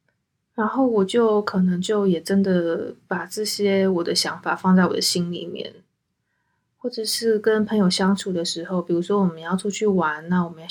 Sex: female